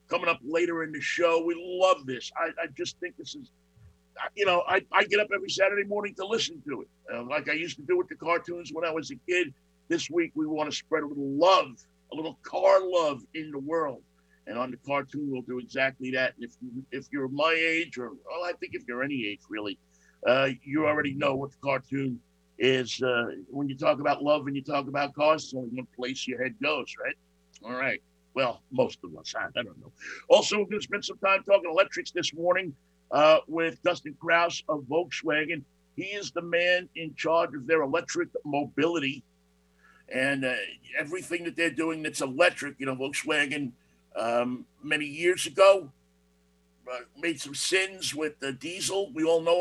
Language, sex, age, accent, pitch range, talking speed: English, male, 50-69, American, 130-175 Hz, 200 wpm